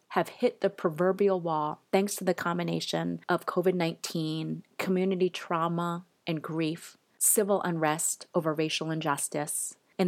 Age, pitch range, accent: 30-49, 165-210 Hz, American